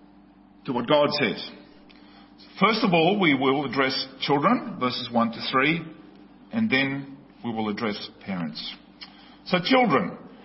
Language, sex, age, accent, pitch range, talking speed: English, male, 50-69, Australian, 140-215 Hz, 130 wpm